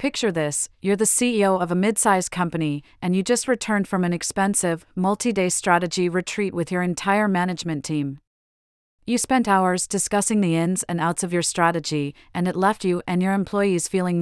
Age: 40-59